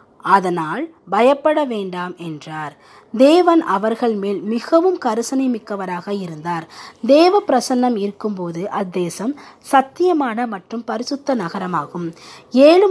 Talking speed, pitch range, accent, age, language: 95 wpm, 200-280 Hz, native, 20-39, Tamil